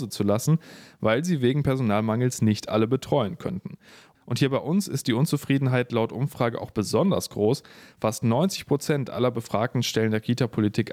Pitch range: 110-145 Hz